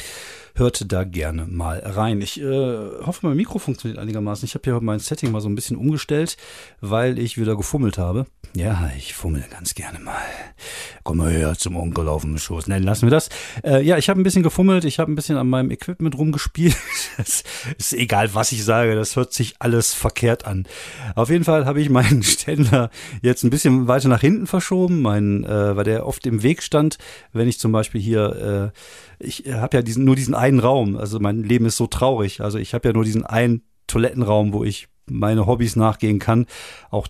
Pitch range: 105-130 Hz